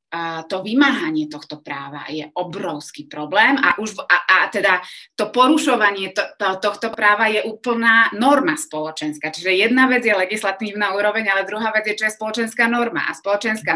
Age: 20-39